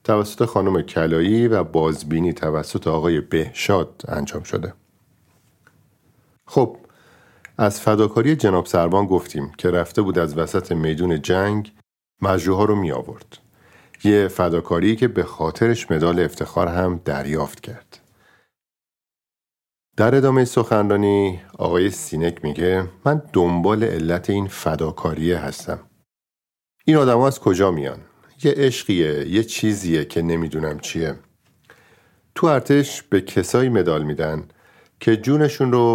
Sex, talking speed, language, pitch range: male, 115 wpm, Persian, 85-110 Hz